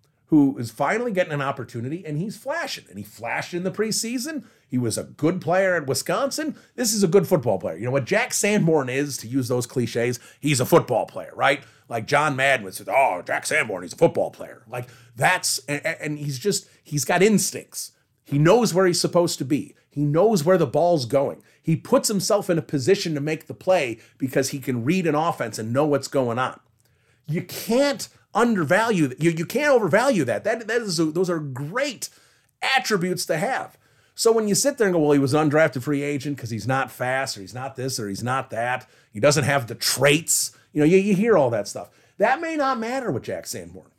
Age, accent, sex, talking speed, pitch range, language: 40-59, American, male, 220 wpm, 130-185 Hz, English